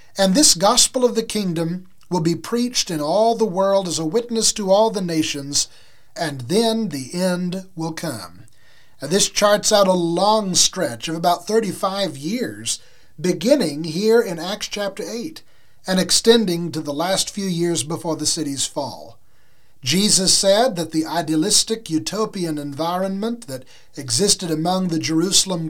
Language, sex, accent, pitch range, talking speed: English, male, American, 160-215 Hz, 150 wpm